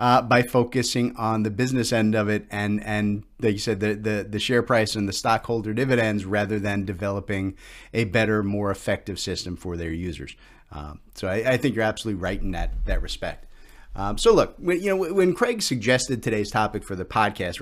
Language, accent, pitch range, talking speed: English, American, 105-130 Hz, 205 wpm